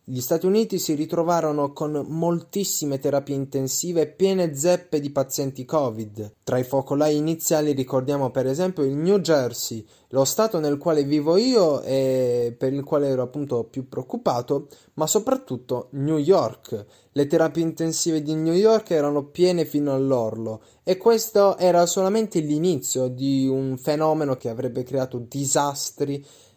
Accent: native